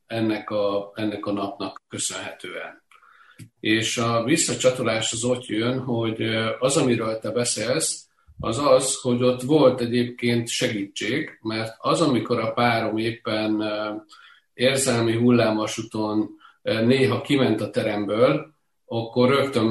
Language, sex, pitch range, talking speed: Hungarian, male, 110-125 Hz, 115 wpm